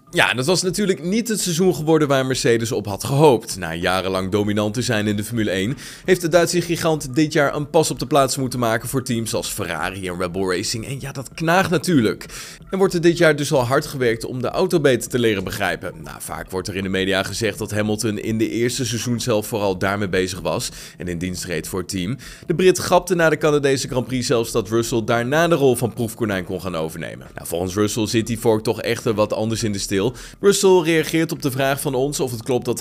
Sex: male